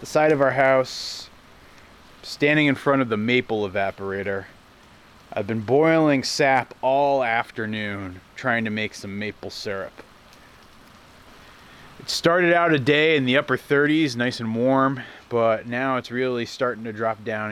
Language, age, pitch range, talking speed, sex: English, 30-49, 105-130 Hz, 150 wpm, male